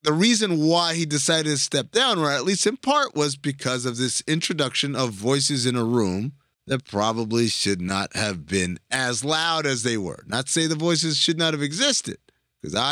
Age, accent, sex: 30-49, American, male